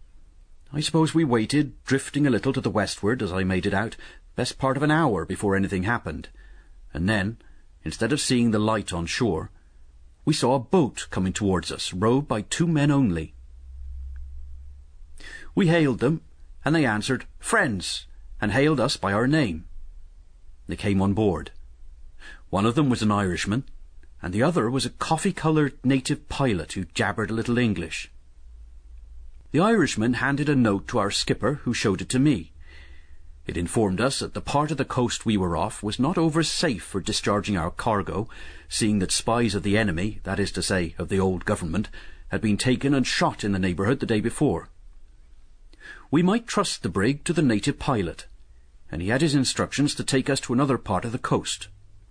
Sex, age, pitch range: male, 40-59, 80-130 Hz